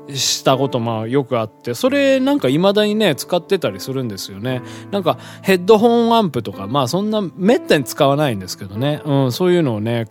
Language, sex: Japanese, male